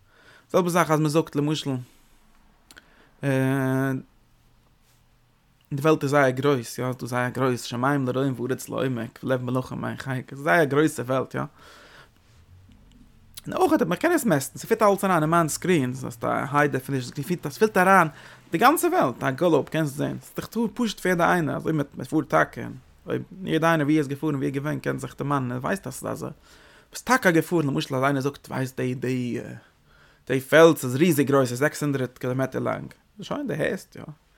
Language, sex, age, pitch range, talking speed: English, male, 20-39, 130-160 Hz, 115 wpm